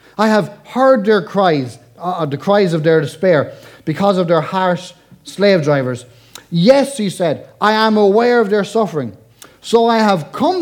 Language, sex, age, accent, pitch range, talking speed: English, male, 30-49, Irish, 170-235 Hz, 170 wpm